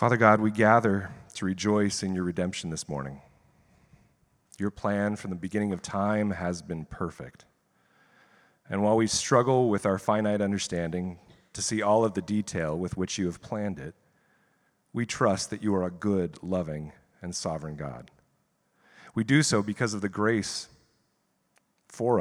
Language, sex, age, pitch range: English, male, 40-59, 90-110 Hz